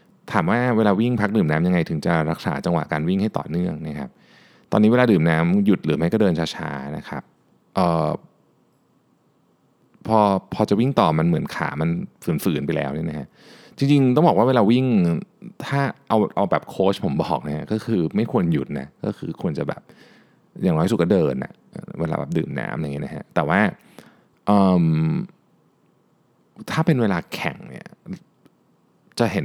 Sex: male